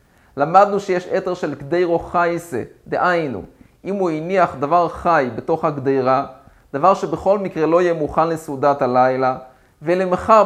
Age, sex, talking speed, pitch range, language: 30-49, male, 130 wpm, 155-190 Hz, Hebrew